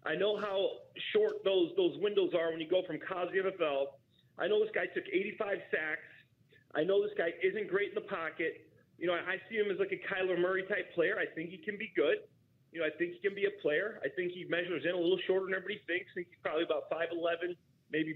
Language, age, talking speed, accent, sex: English, 30-49, 250 wpm, American, male